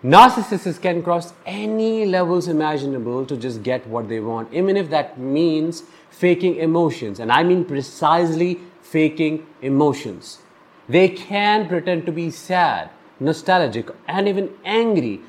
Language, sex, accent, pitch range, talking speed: English, male, Indian, 135-180 Hz, 135 wpm